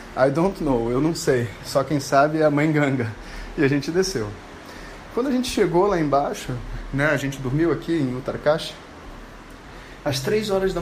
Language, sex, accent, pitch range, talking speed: Portuguese, male, Brazilian, 135-170 Hz, 190 wpm